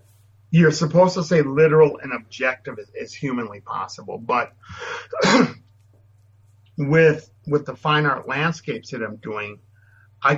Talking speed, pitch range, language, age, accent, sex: 125 wpm, 105-145 Hz, English, 50-69, American, male